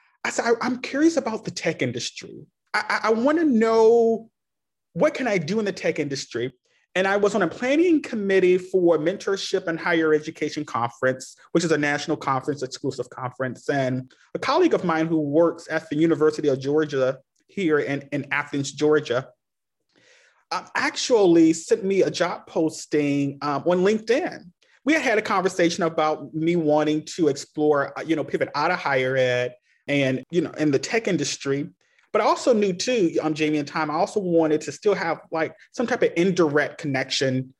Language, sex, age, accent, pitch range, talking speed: English, male, 30-49, American, 140-195 Hz, 180 wpm